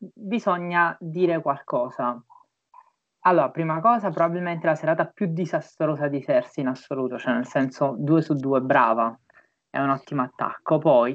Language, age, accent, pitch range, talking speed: Italian, 20-39, native, 140-175 Hz, 145 wpm